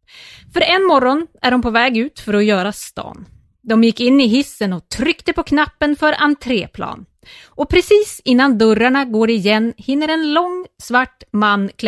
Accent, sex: Swedish, female